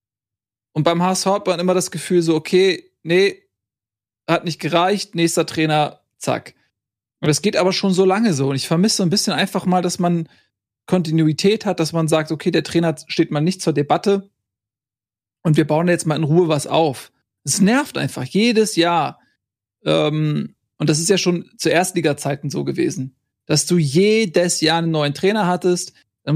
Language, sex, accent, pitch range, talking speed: German, male, German, 150-185 Hz, 180 wpm